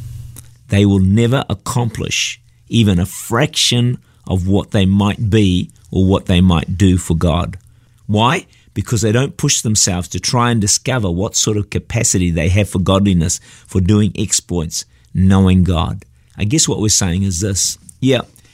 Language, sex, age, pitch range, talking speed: English, male, 50-69, 95-120 Hz, 160 wpm